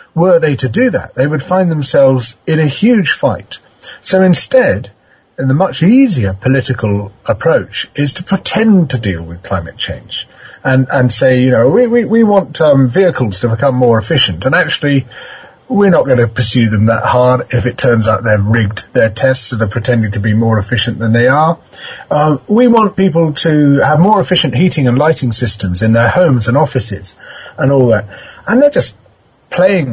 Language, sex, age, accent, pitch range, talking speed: English, male, 40-59, British, 110-155 Hz, 195 wpm